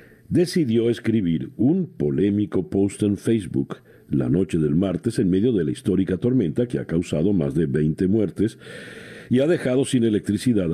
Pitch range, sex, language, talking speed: 95-125 Hz, male, Spanish, 160 wpm